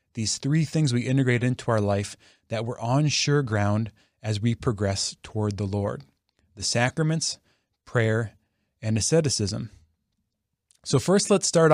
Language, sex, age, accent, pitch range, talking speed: English, male, 20-39, American, 110-150 Hz, 145 wpm